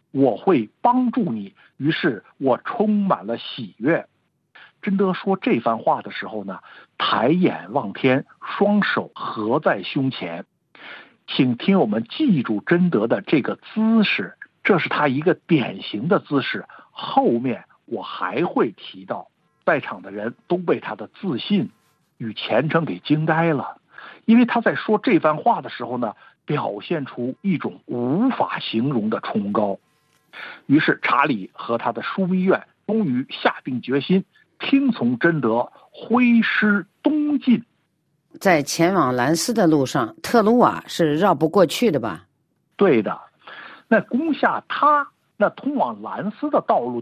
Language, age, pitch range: Chinese, 60-79, 150-235 Hz